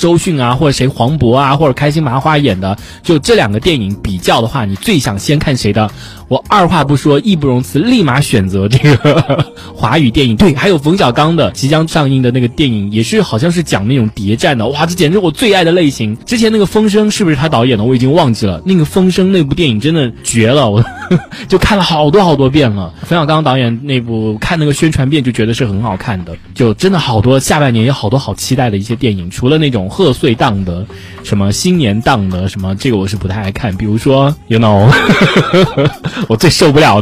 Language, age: Chinese, 20-39